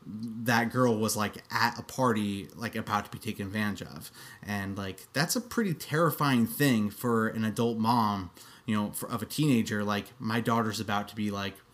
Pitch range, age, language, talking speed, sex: 110-135 Hz, 20-39, English, 190 wpm, male